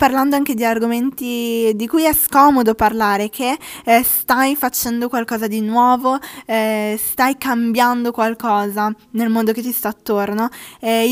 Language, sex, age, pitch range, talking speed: Italian, female, 10-29, 220-255 Hz, 145 wpm